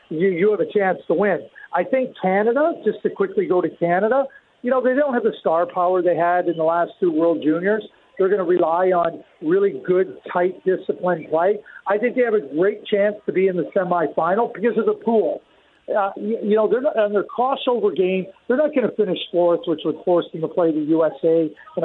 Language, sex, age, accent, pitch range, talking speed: English, male, 50-69, American, 175-215 Hz, 220 wpm